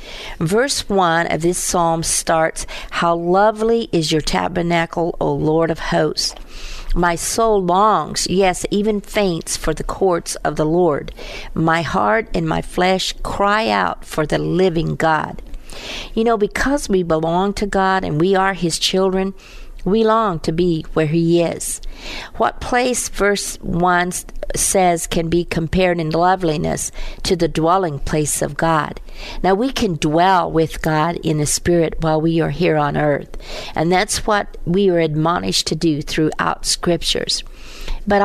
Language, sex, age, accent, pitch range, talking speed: English, female, 50-69, American, 165-195 Hz, 155 wpm